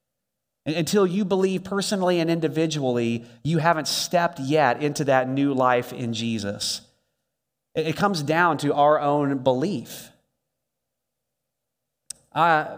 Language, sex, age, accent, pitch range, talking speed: English, male, 30-49, American, 130-170 Hz, 115 wpm